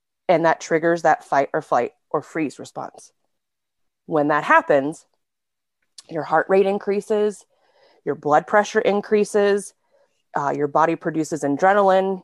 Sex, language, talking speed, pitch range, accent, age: female, English, 125 wpm, 145-190 Hz, American, 30-49